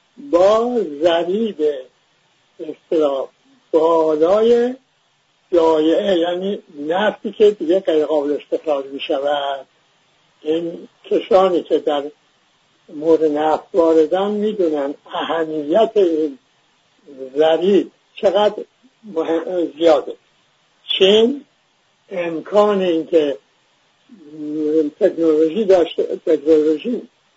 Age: 60-79